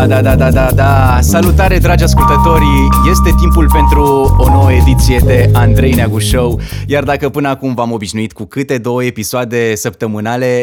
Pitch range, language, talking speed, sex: 105-135 Hz, Romanian, 165 wpm, male